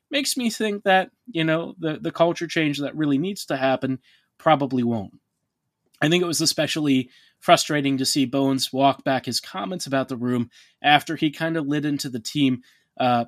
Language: English